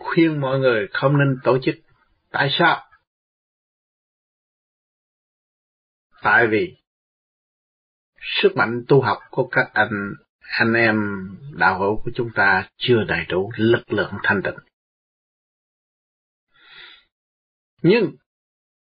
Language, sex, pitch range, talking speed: Vietnamese, male, 110-175 Hz, 105 wpm